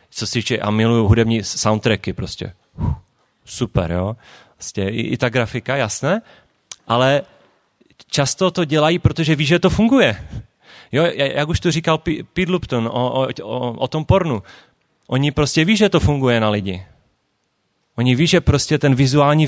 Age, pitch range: 30-49, 105-140 Hz